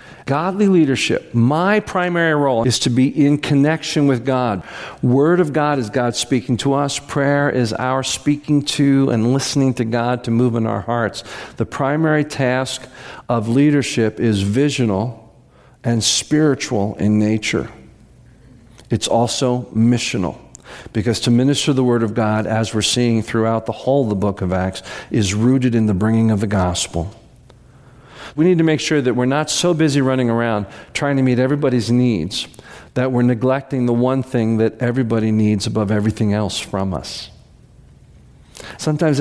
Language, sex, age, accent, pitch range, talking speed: English, male, 50-69, American, 110-130 Hz, 160 wpm